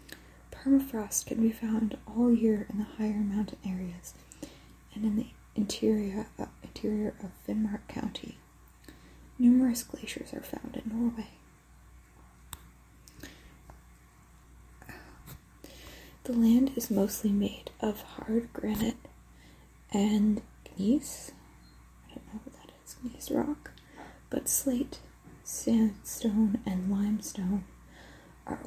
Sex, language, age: female, English, 30-49